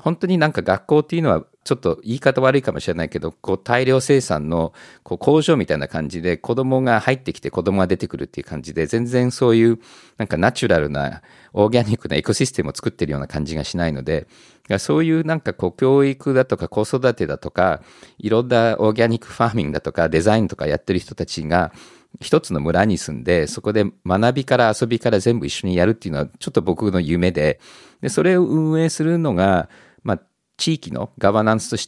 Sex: male